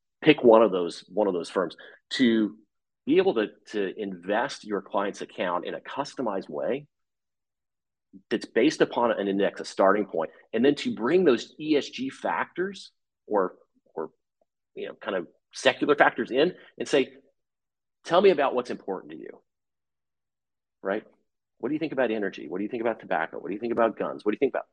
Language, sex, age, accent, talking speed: English, male, 40-59, American, 190 wpm